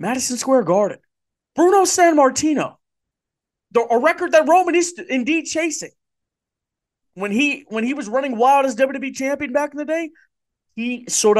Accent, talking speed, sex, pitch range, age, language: American, 160 wpm, male, 130-185 Hz, 30-49, English